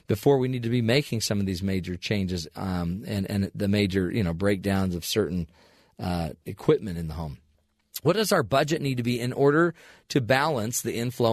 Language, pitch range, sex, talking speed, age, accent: English, 100-150 Hz, male, 205 wpm, 40-59, American